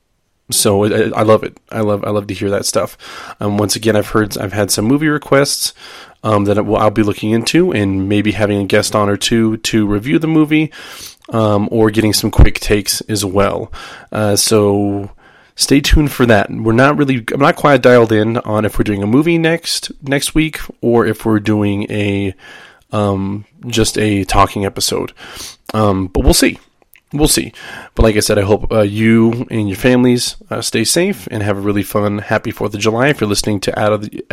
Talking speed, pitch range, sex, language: 210 wpm, 105-120 Hz, male, English